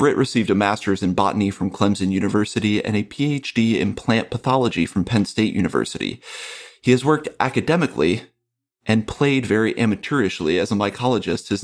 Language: English